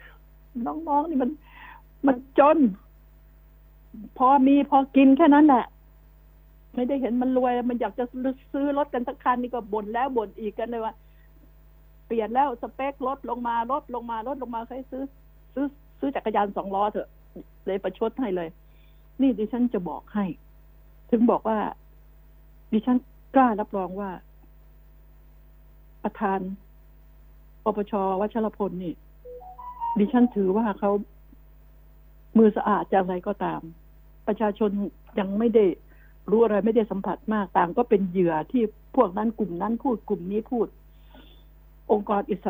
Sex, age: female, 60-79